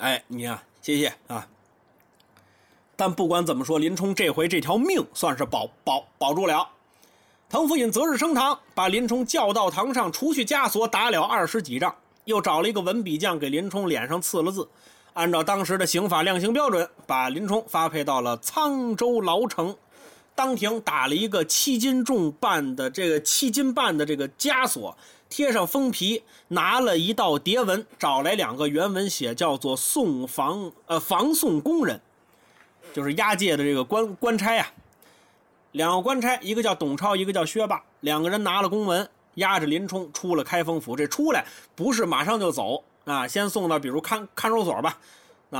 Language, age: Chinese, 30-49